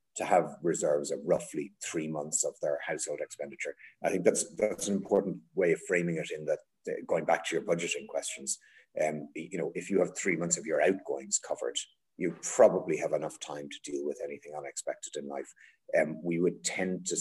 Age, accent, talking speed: 30-49, Irish, 200 wpm